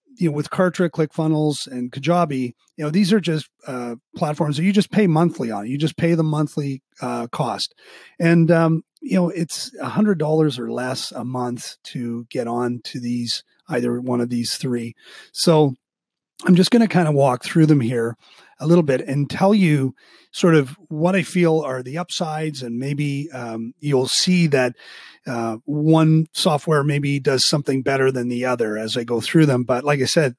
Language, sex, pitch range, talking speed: English, male, 125-165 Hz, 190 wpm